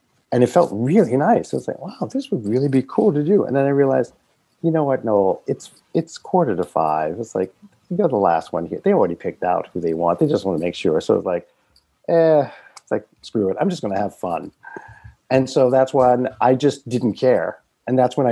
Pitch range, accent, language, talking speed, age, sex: 105-160 Hz, American, English, 245 wpm, 40-59, male